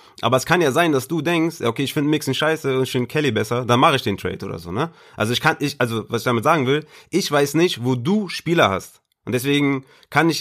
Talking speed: 270 wpm